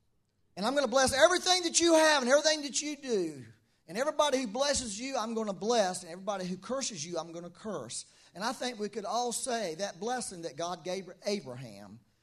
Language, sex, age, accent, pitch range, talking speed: English, male, 40-59, American, 155-235 Hz, 220 wpm